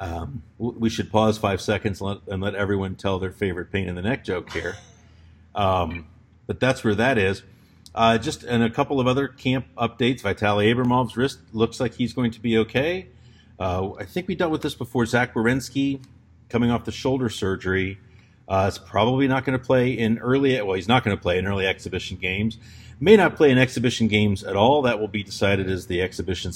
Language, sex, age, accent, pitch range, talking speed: English, male, 50-69, American, 100-125 Hz, 210 wpm